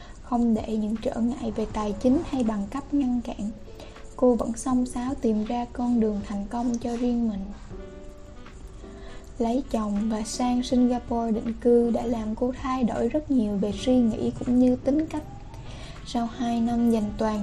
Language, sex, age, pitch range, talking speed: Vietnamese, female, 10-29, 215-250 Hz, 180 wpm